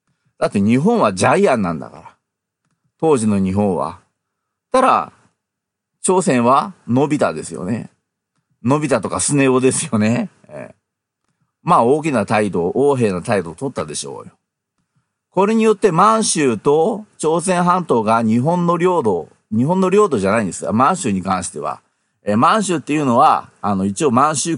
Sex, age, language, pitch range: male, 40-59, Japanese, 125-185 Hz